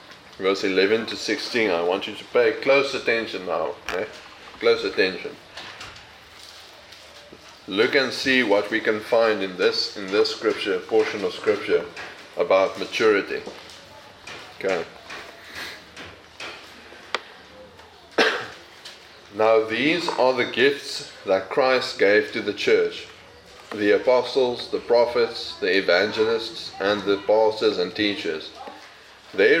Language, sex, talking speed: English, male, 115 wpm